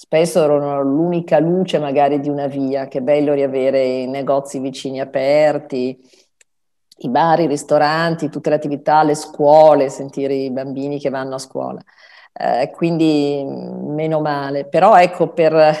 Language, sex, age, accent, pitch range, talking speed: Italian, female, 40-59, native, 140-165 Hz, 145 wpm